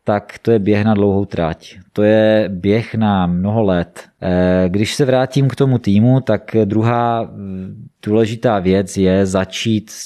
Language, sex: Czech, male